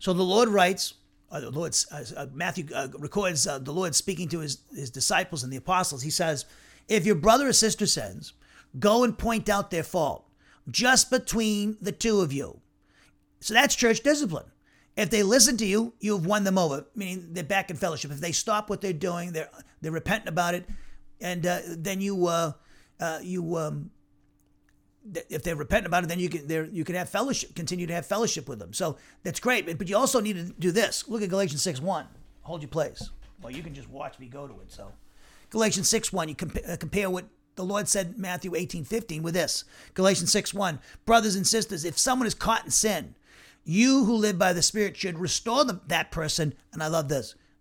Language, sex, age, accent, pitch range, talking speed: English, male, 50-69, American, 155-205 Hz, 215 wpm